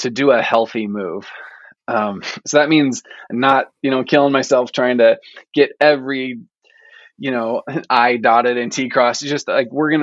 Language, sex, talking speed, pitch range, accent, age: English, male, 180 wpm, 115-155 Hz, American, 20-39